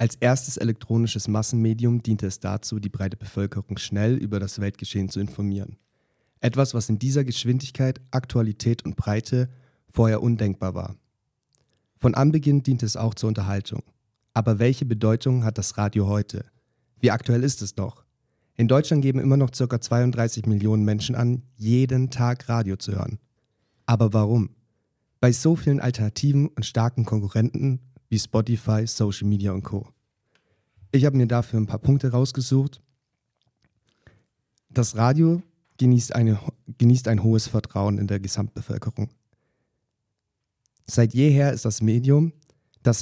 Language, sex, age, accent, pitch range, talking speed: English, male, 30-49, German, 105-125 Hz, 140 wpm